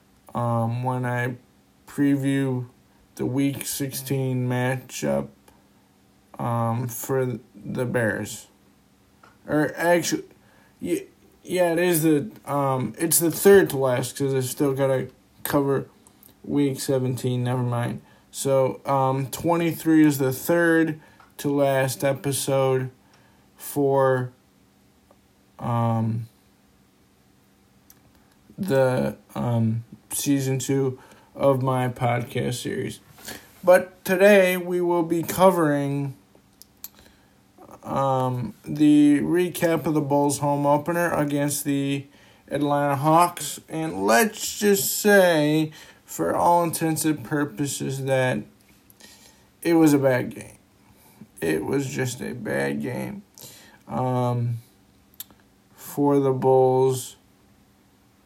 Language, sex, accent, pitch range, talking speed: English, male, American, 120-150 Hz, 100 wpm